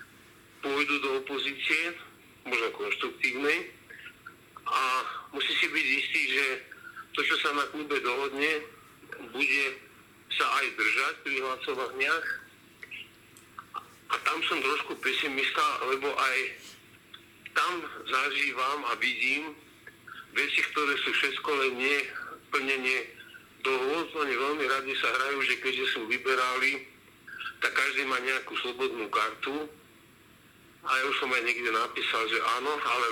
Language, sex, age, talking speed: Slovak, male, 50-69, 120 wpm